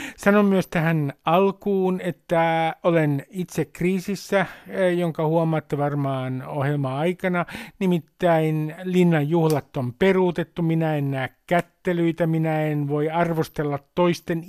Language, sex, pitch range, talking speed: Finnish, male, 155-185 Hz, 110 wpm